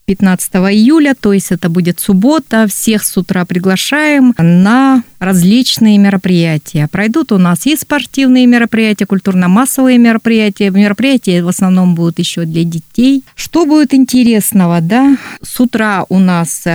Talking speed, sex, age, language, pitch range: 135 wpm, female, 30-49, Russian, 185-235 Hz